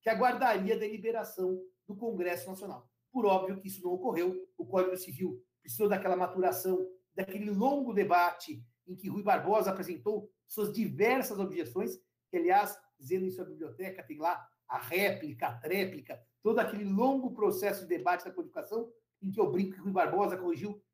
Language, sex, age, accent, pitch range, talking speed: Portuguese, male, 60-79, Brazilian, 180-225 Hz, 165 wpm